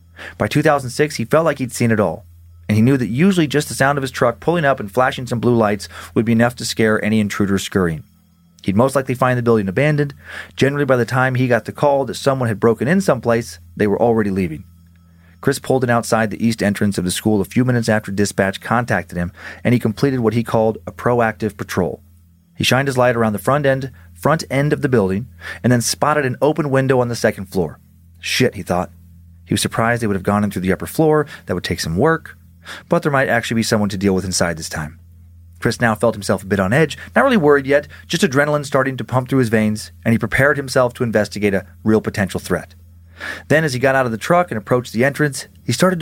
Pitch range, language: 95-135 Hz, English